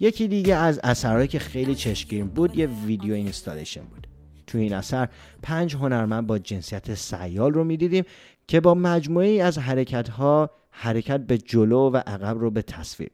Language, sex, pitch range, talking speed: English, male, 100-135 Hz, 165 wpm